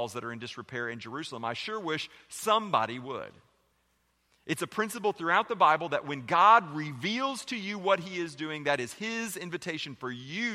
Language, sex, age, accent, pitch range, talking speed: English, male, 40-59, American, 130-190 Hz, 190 wpm